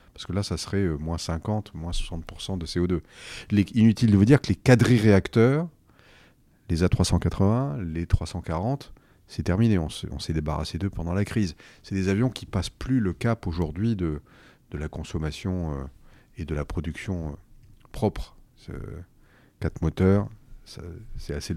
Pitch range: 85-110 Hz